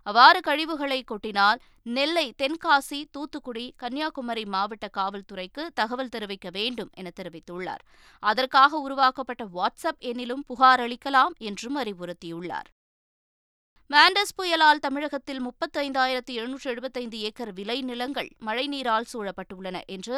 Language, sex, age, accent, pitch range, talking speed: Tamil, female, 20-39, native, 210-280 Hz, 40 wpm